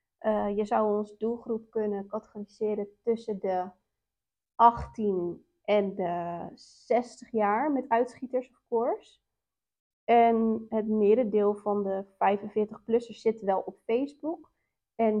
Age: 30-49